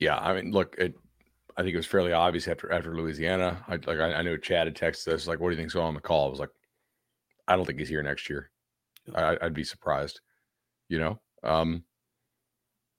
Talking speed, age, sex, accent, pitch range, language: 225 wpm, 40-59, male, American, 80-95 Hz, English